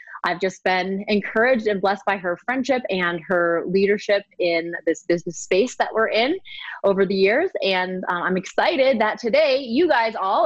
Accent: American